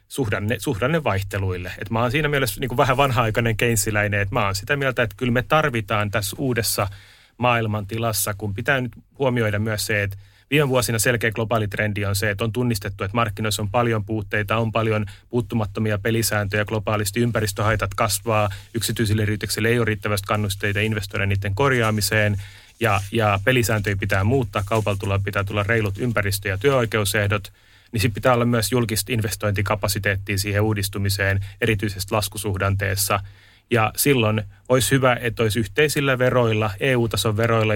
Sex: male